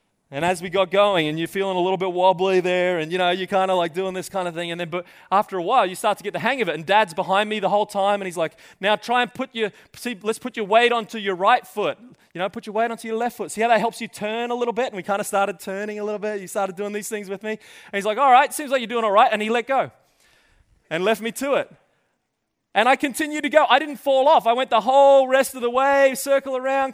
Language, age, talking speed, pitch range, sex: English, 20-39, 305 wpm, 175-235 Hz, male